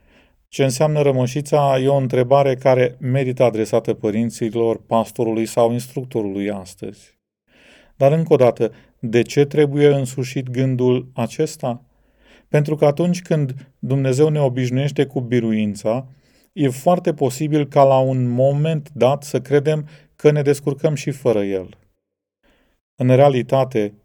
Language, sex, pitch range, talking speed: Romanian, male, 110-140 Hz, 125 wpm